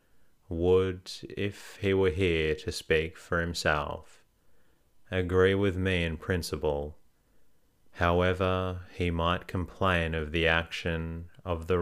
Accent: Australian